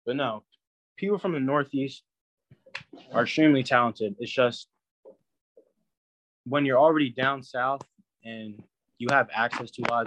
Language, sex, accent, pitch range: English, male, American, 105-125 Hz